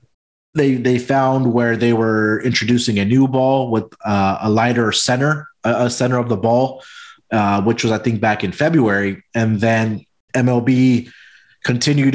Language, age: English, 20-39